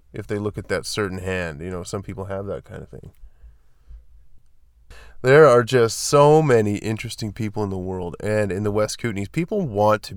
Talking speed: 200 wpm